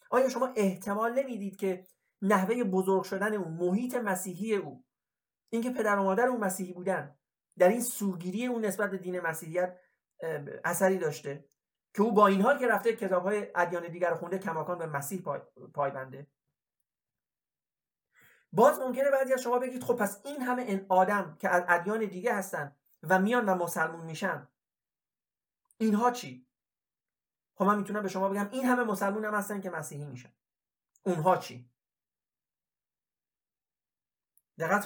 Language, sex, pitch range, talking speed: Persian, male, 175-225 Hz, 150 wpm